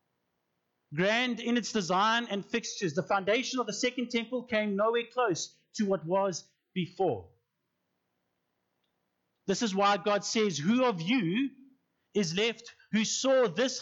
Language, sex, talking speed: English, male, 140 wpm